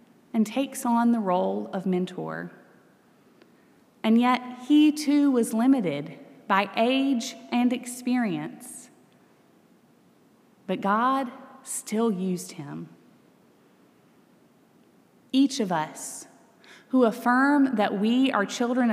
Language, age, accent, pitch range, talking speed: English, 20-39, American, 190-245 Hz, 100 wpm